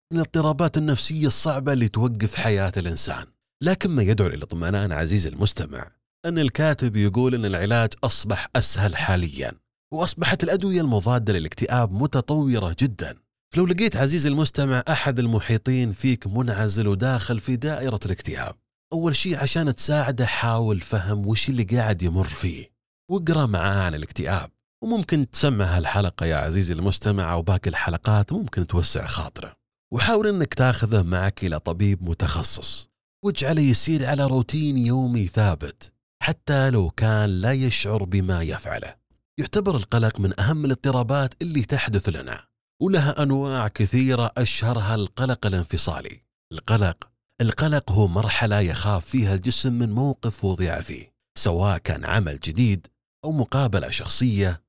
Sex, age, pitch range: male, 30-49, 100-140 Hz